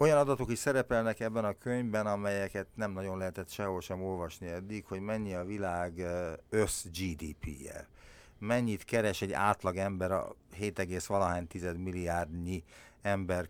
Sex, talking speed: male, 140 wpm